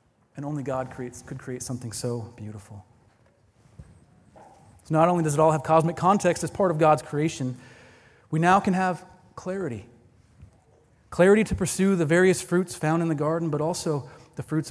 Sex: male